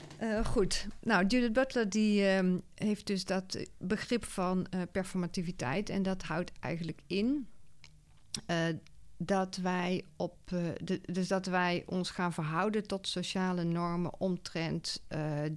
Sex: female